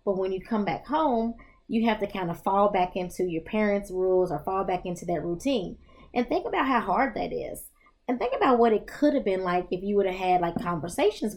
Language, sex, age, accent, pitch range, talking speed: English, female, 20-39, American, 175-215 Hz, 245 wpm